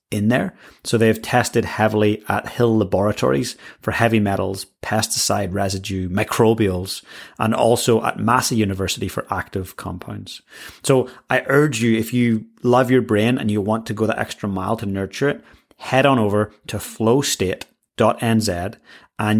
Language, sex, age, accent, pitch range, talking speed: English, male, 30-49, British, 95-115 Hz, 150 wpm